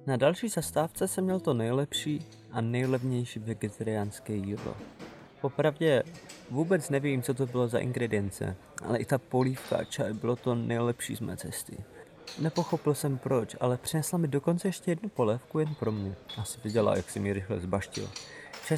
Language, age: Czech, 20-39